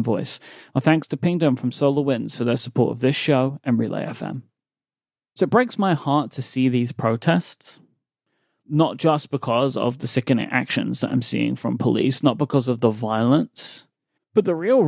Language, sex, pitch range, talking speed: English, male, 120-145 Hz, 180 wpm